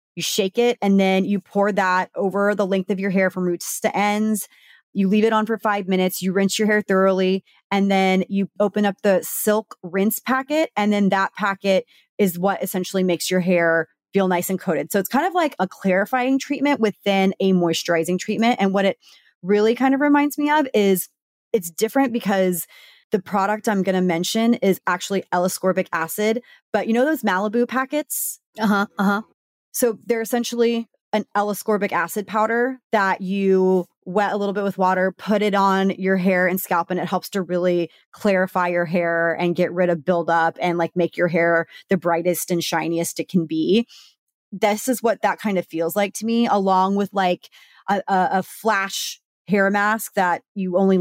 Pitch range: 180-215 Hz